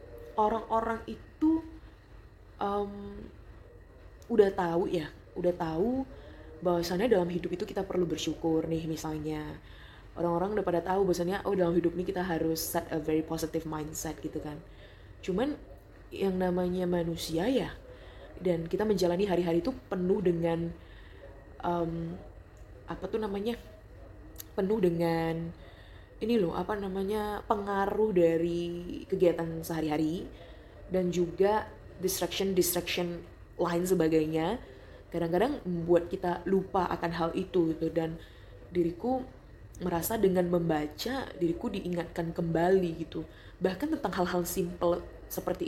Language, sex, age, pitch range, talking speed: Indonesian, female, 20-39, 160-190 Hz, 115 wpm